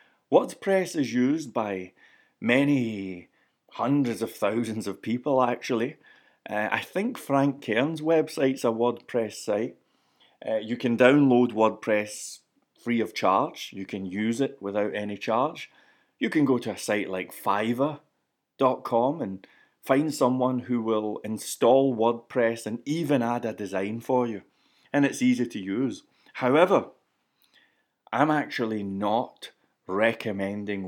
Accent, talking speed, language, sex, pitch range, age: British, 130 wpm, English, male, 105-135 Hz, 30-49